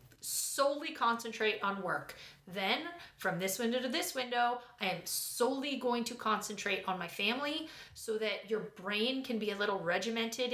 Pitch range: 190-235 Hz